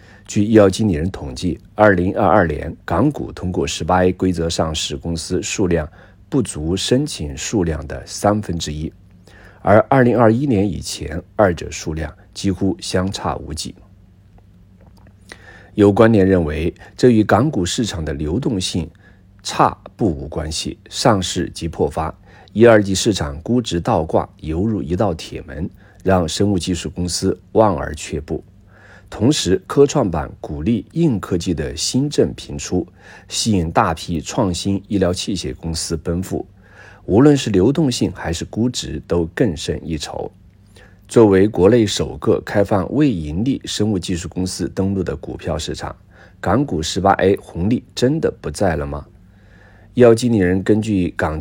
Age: 50-69